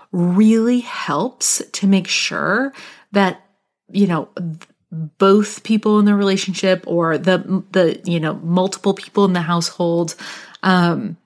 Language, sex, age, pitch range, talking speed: English, female, 30-49, 170-205 Hz, 130 wpm